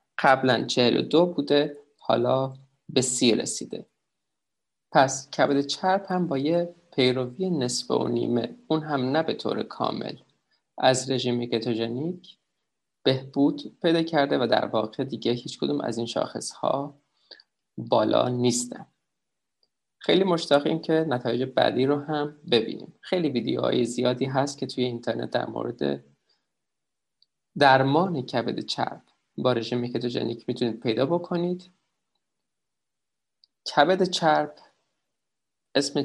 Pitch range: 120-160 Hz